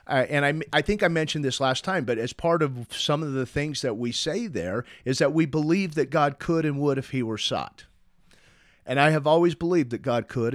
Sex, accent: male, American